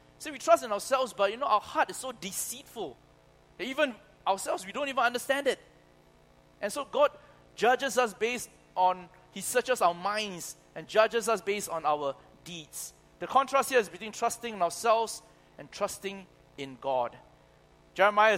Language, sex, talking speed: English, male, 170 wpm